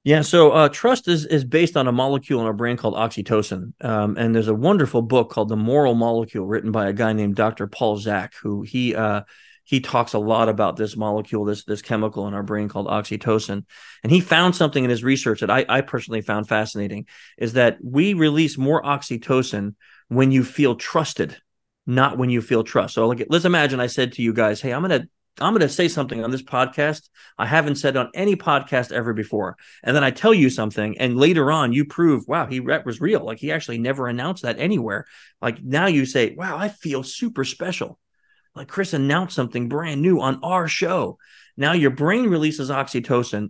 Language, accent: English, American